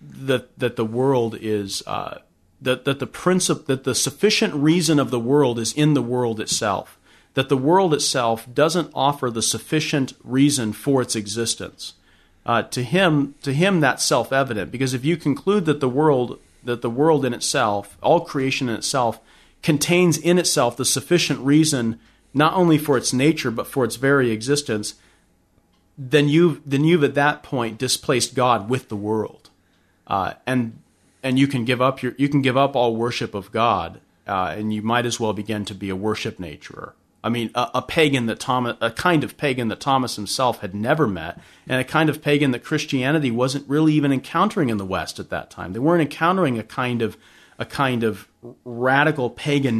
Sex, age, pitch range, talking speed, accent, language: male, 40-59, 115-145 Hz, 200 wpm, American, English